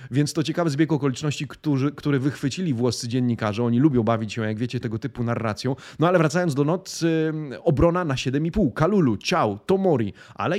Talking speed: 175 wpm